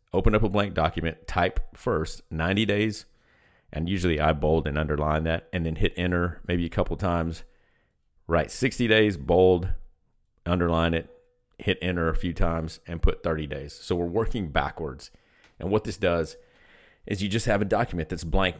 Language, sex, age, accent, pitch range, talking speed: English, male, 40-59, American, 80-95 Hz, 175 wpm